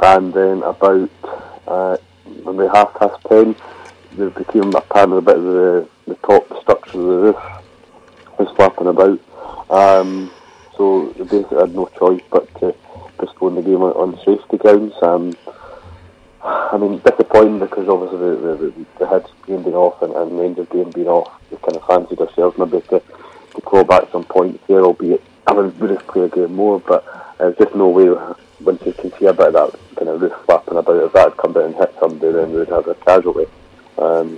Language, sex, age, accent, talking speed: English, male, 30-49, British, 200 wpm